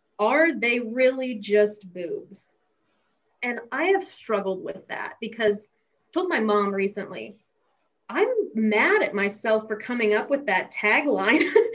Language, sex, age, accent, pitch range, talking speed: English, female, 20-39, American, 200-240 Hz, 140 wpm